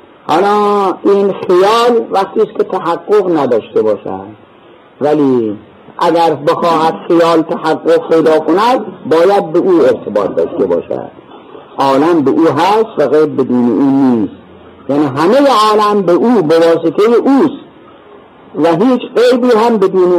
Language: Persian